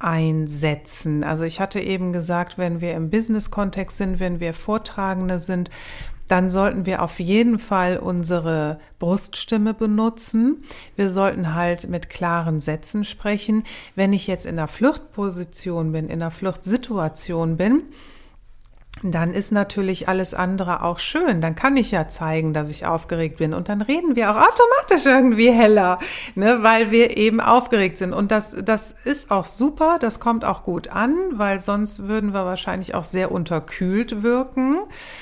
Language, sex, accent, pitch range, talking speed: German, female, German, 175-225 Hz, 155 wpm